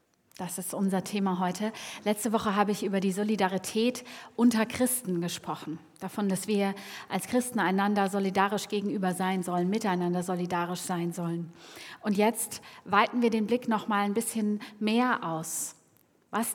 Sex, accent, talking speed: female, German, 150 wpm